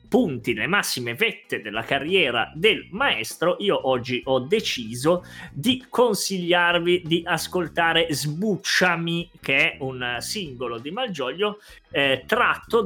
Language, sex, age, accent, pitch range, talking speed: Italian, male, 30-49, native, 125-180 Hz, 115 wpm